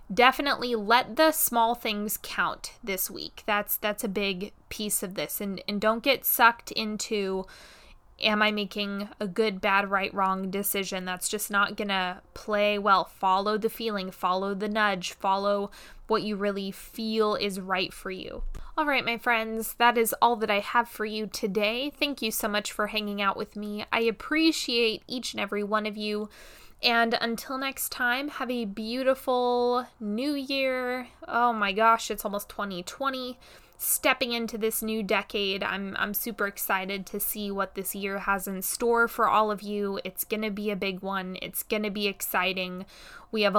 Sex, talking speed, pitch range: female, 180 wpm, 200-230 Hz